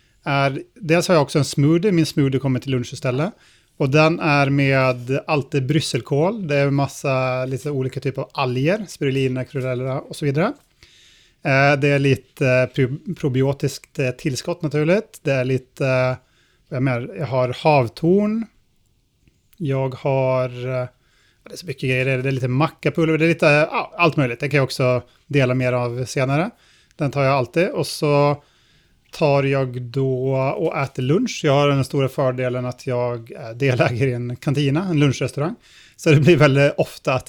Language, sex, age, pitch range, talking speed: Swedish, male, 30-49, 130-155 Hz, 175 wpm